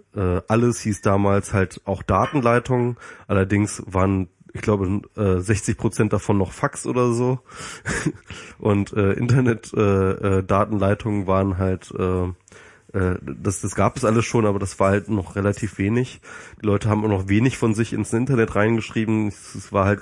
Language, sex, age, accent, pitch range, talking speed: German, male, 30-49, German, 100-115 Hz, 140 wpm